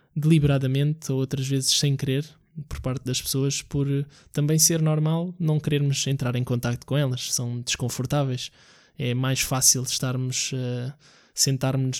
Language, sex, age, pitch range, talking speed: Portuguese, male, 20-39, 125-140 Hz, 140 wpm